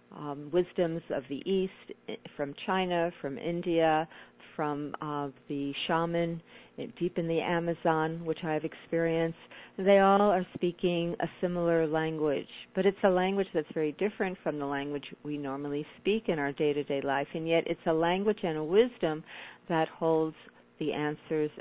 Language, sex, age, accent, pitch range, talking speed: English, female, 50-69, American, 150-185 Hz, 160 wpm